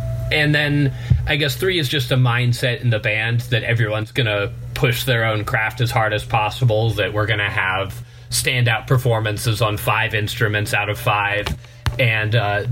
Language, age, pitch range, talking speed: English, 30-49, 115-130 Hz, 175 wpm